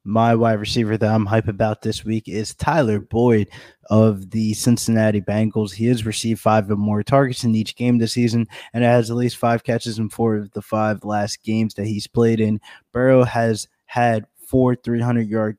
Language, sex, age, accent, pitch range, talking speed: English, male, 20-39, American, 105-115 Hz, 195 wpm